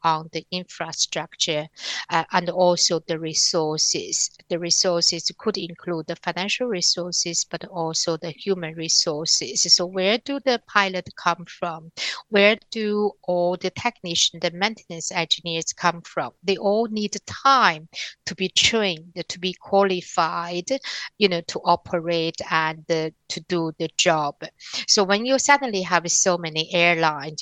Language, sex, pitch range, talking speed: English, female, 160-185 Hz, 140 wpm